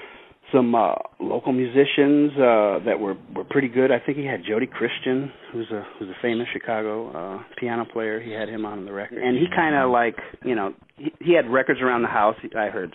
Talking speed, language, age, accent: 225 wpm, English, 40-59, American